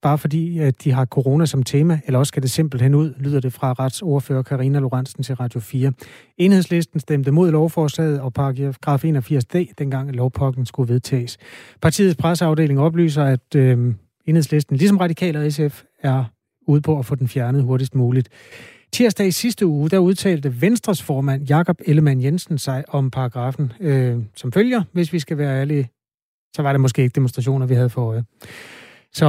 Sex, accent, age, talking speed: male, native, 30-49, 175 wpm